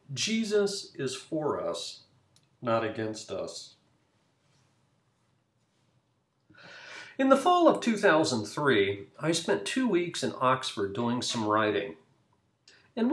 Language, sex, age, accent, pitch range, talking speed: English, male, 50-69, American, 120-195 Hz, 100 wpm